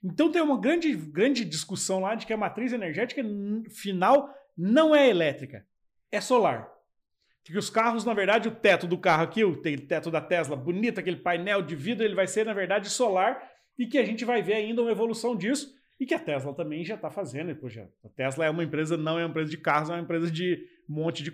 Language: Portuguese